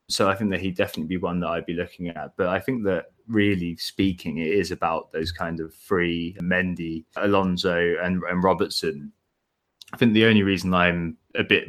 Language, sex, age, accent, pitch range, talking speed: English, male, 20-39, British, 95-130 Hz, 200 wpm